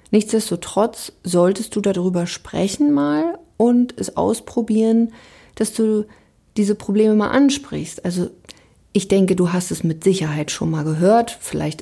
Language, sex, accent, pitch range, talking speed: German, female, German, 170-210 Hz, 135 wpm